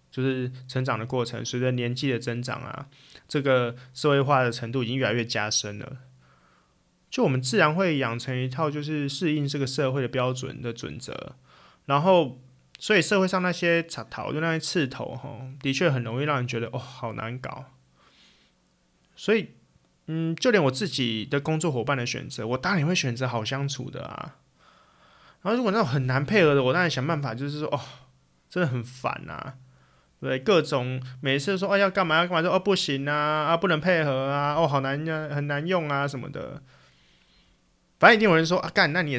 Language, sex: Chinese, male